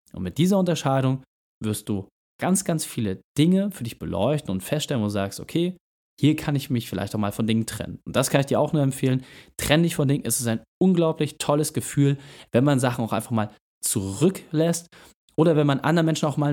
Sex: male